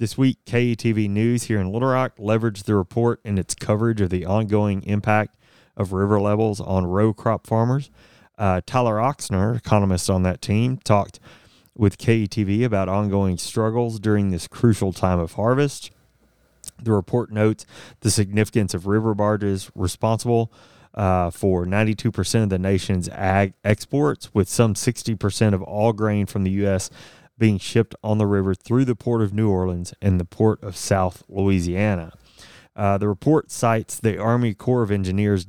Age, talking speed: 30-49, 160 wpm